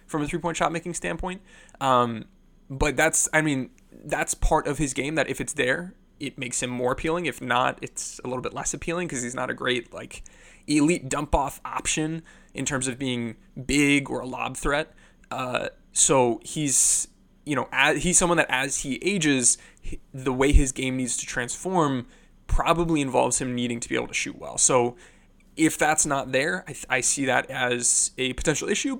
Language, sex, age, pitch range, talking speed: English, male, 20-39, 125-160 Hz, 190 wpm